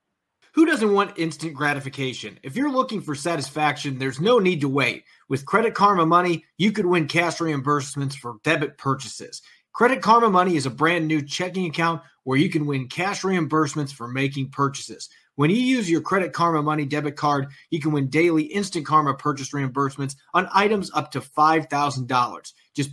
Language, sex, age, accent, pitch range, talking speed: English, male, 30-49, American, 140-180 Hz, 180 wpm